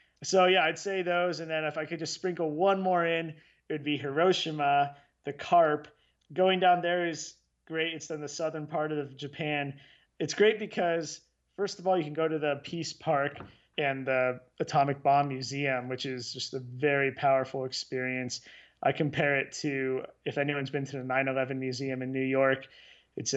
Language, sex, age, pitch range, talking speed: English, male, 20-39, 130-155 Hz, 190 wpm